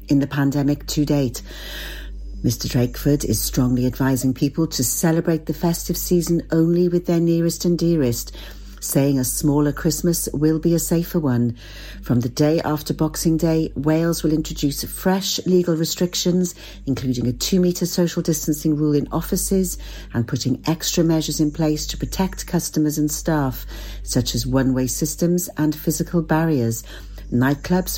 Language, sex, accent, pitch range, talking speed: English, female, British, 130-165 Hz, 150 wpm